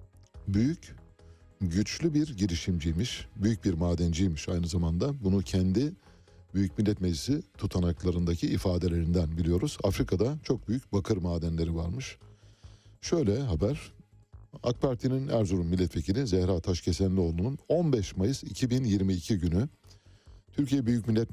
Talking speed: 105 wpm